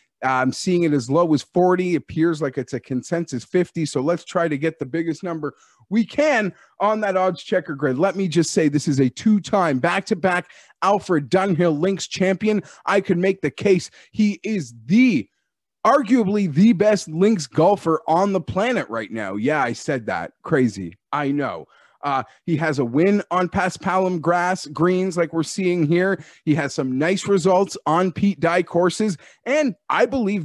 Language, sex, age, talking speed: English, male, 30-49, 185 wpm